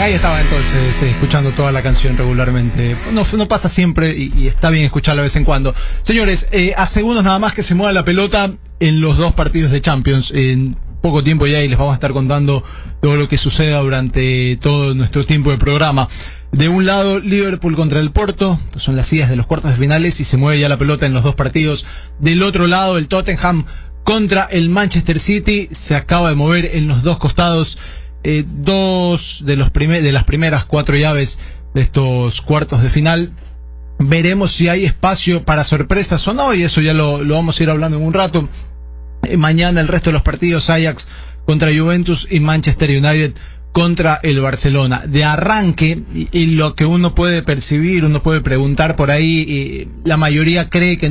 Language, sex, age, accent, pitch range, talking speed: English, male, 20-39, Argentinian, 135-170 Hz, 200 wpm